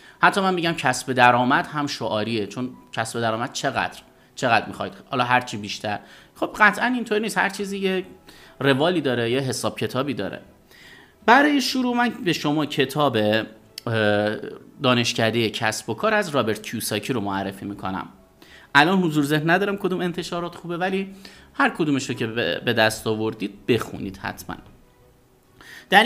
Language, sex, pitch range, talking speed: Persian, male, 110-160 Hz, 150 wpm